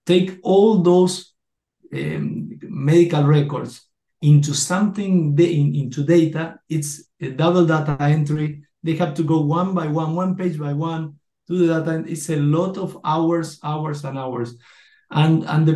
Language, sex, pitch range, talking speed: English, male, 150-180 Hz, 160 wpm